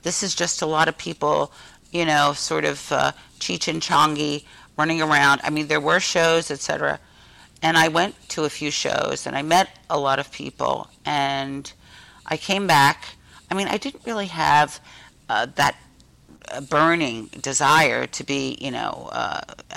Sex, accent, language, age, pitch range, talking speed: female, American, English, 50-69, 145-170 Hz, 175 wpm